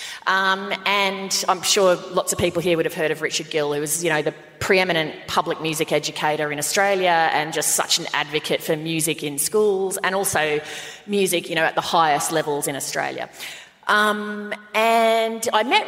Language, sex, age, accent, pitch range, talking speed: English, female, 30-49, Australian, 160-215 Hz, 185 wpm